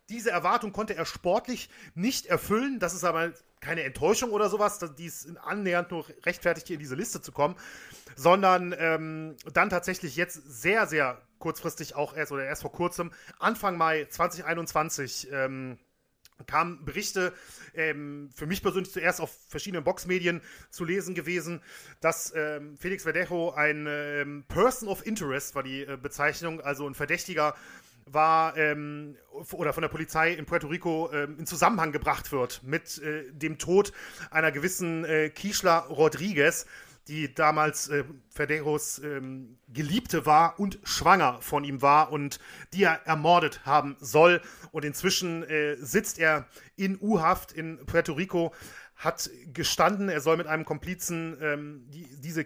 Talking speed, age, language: 150 wpm, 30-49, German